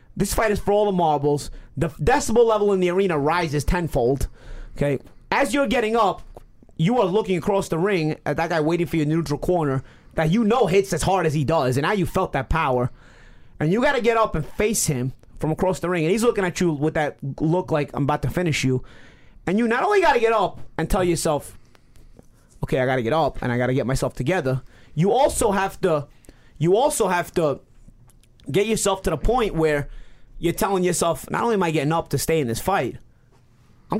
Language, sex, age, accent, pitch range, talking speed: English, male, 30-49, American, 140-195 Hz, 220 wpm